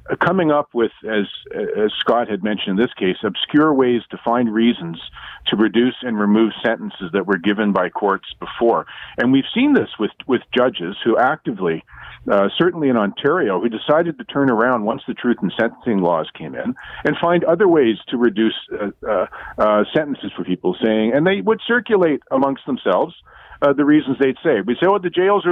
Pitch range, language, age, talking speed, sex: 105-145 Hz, English, 50-69, 200 wpm, male